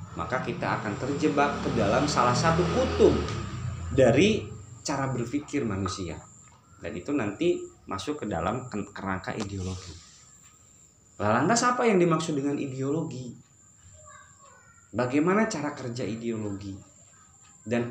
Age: 30-49